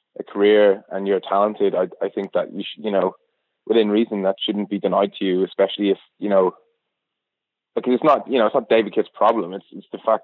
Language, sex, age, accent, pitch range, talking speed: English, male, 20-39, British, 100-115 Hz, 230 wpm